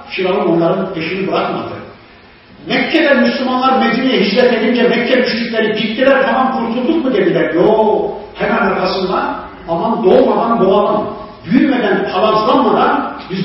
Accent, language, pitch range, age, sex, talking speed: native, Turkish, 165-210 Hz, 50-69, male, 110 wpm